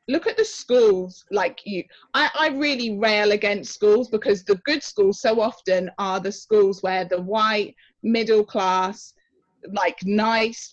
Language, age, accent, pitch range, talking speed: English, 30-49, British, 190-240 Hz, 155 wpm